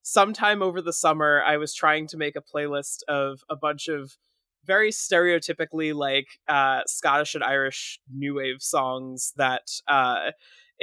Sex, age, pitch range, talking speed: male, 20-39, 140-170 Hz, 150 wpm